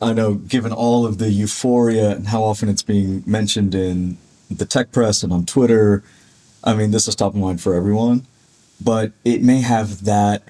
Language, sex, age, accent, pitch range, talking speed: English, male, 30-49, American, 95-115 Hz, 195 wpm